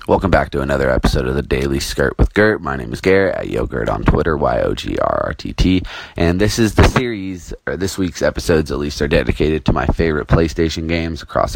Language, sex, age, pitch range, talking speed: English, male, 20-39, 70-90 Hz, 200 wpm